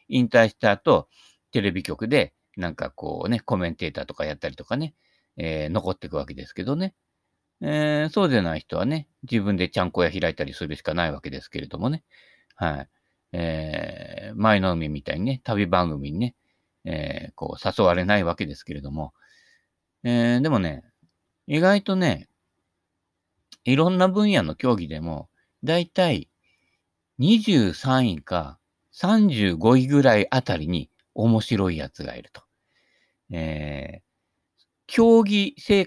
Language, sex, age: Japanese, male, 50-69